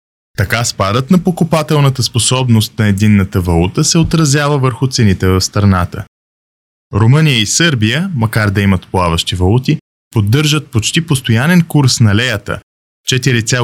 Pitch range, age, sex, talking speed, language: 105-135 Hz, 20-39, male, 130 wpm, Bulgarian